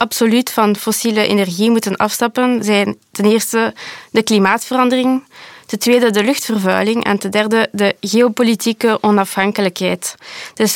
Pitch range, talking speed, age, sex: 205-235 Hz, 125 wpm, 20-39, female